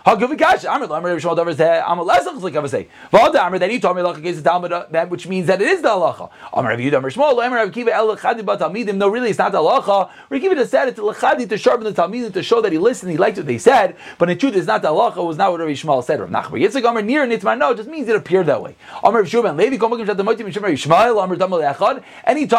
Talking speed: 145 wpm